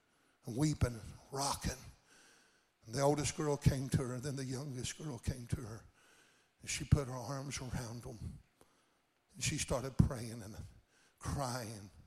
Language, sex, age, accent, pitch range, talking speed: English, male, 60-79, American, 120-160 Hz, 145 wpm